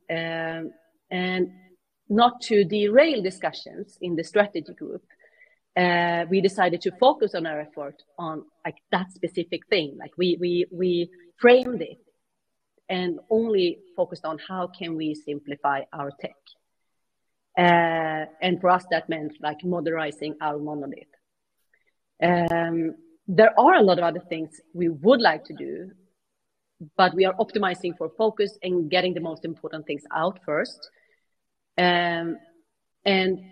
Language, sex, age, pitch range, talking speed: English, female, 40-59, 165-210 Hz, 140 wpm